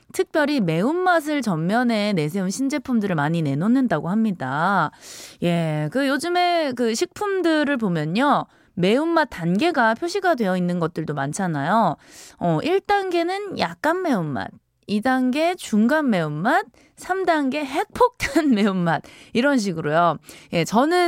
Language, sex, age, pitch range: Korean, female, 20-39, 195-300 Hz